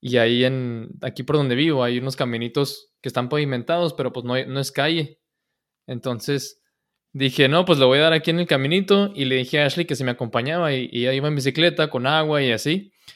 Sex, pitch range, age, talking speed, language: male, 125-155 Hz, 20-39, 230 wpm, Spanish